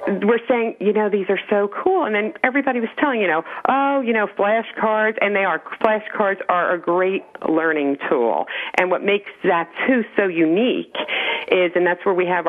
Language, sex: English, female